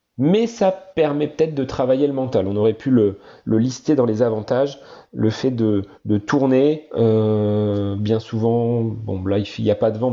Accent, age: French, 40-59